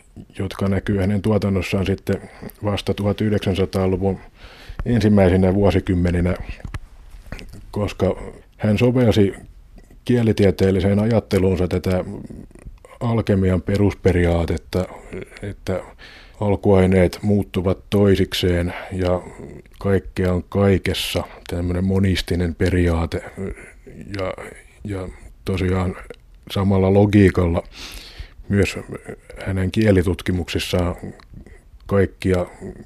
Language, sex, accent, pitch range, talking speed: Finnish, male, native, 90-100 Hz, 70 wpm